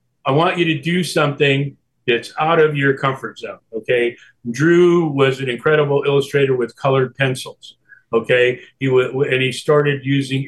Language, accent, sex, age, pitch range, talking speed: English, American, male, 50-69, 130-150 Hz, 160 wpm